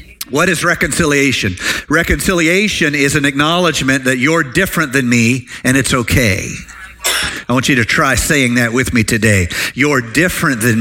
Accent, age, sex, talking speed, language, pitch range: American, 50-69, male, 155 wpm, English, 135-170 Hz